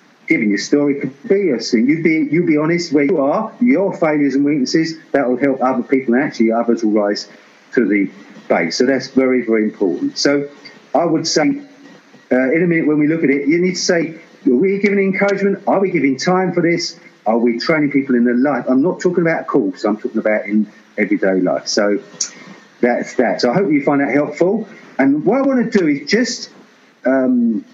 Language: English